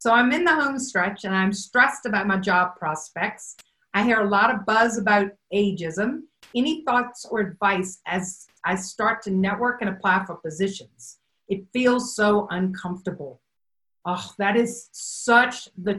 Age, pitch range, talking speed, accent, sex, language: 50-69, 200-245 Hz, 160 wpm, American, female, English